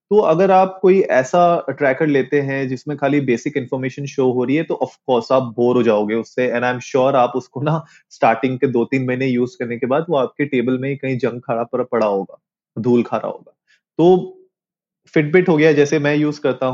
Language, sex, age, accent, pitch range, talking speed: Hindi, male, 30-49, native, 125-165 Hz, 220 wpm